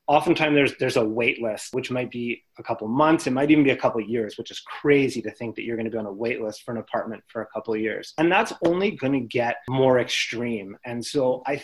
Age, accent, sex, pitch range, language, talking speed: 30-49, American, male, 115-145 Hz, English, 280 wpm